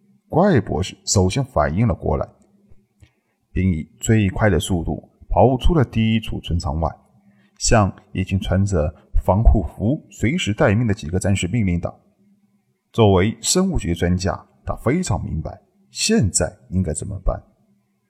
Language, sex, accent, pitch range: Chinese, male, native, 90-120 Hz